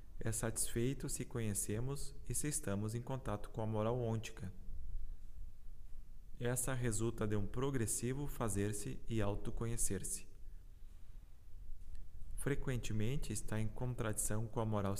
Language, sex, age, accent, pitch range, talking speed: Portuguese, male, 20-39, Brazilian, 95-115 Hz, 110 wpm